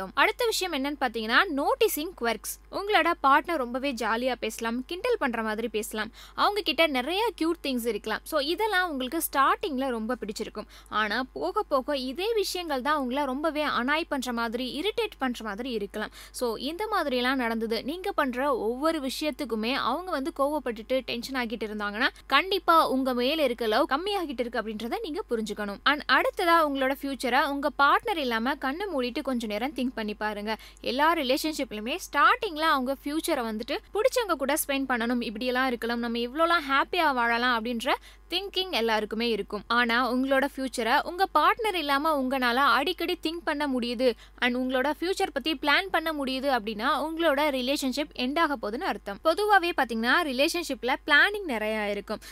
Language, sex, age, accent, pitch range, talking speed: Tamil, female, 20-39, native, 240-320 Hz, 80 wpm